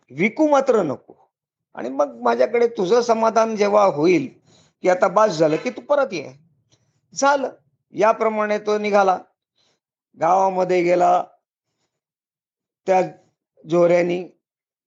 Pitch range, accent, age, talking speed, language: 150-210 Hz, native, 50-69, 95 wpm, Marathi